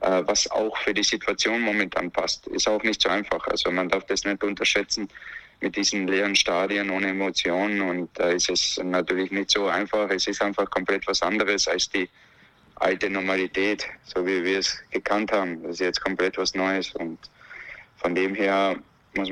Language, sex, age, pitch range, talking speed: German, male, 20-39, 95-105 Hz, 185 wpm